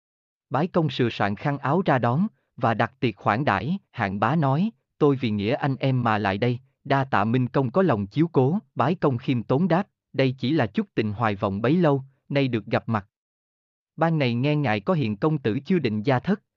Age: 20-39